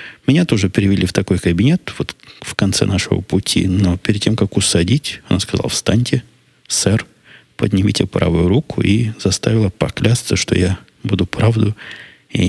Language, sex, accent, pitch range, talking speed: Russian, male, native, 90-110 Hz, 150 wpm